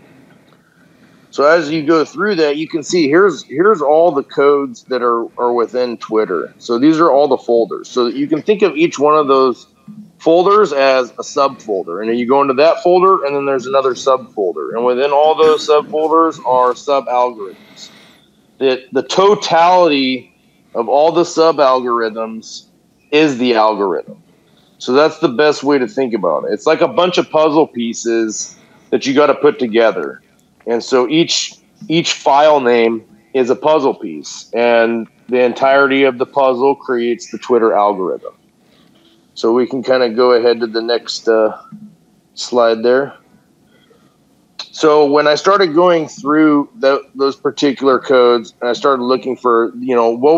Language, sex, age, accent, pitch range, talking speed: English, male, 40-59, American, 120-170 Hz, 165 wpm